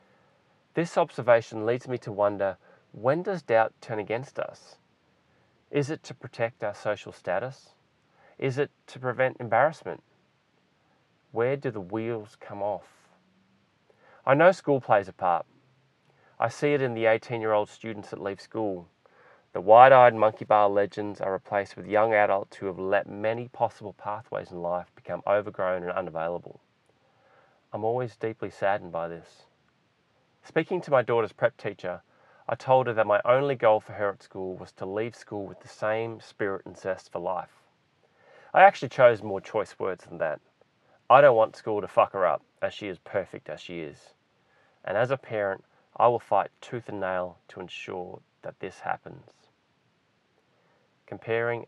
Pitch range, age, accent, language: 100-125 Hz, 30-49, Australian, English